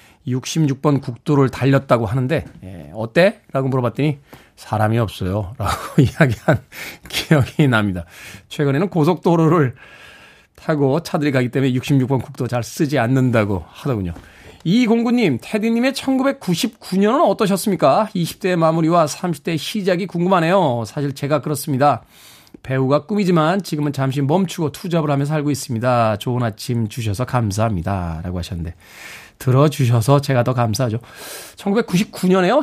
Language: Korean